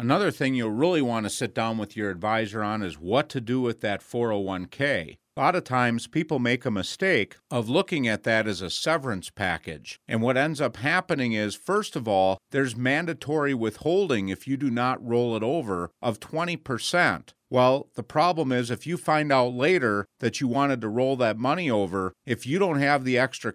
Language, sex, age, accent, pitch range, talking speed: English, male, 50-69, American, 115-150 Hz, 200 wpm